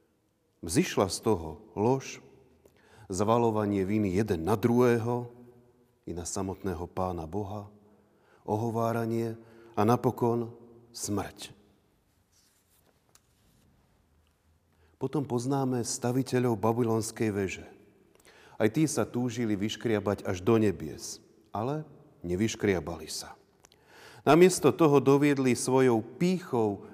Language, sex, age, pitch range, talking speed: Slovak, male, 40-59, 105-130 Hz, 85 wpm